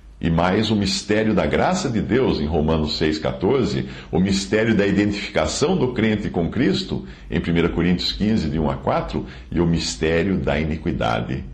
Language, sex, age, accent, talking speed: English, male, 60-79, Brazilian, 165 wpm